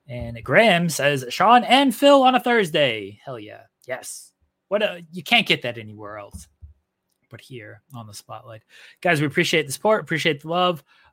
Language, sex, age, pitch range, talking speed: English, male, 20-39, 115-155 Hz, 180 wpm